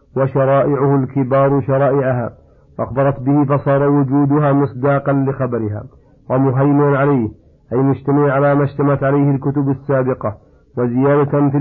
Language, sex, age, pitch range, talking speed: Arabic, male, 50-69, 130-140 Hz, 105 wpm